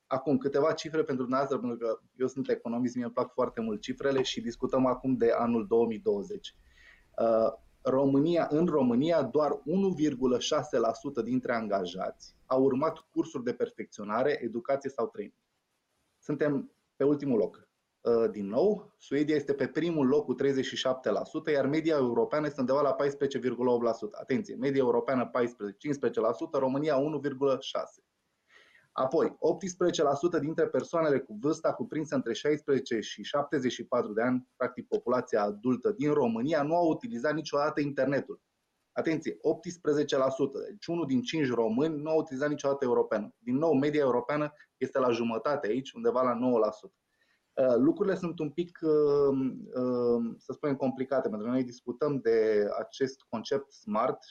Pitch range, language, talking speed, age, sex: 125-155 Hz, Romanian, 140 wpm, 20-39, male